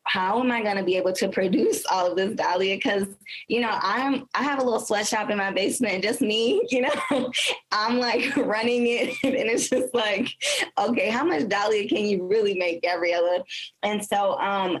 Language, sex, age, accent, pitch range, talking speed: English, female, 20-39, American, 185-230 Hz, 195 wpm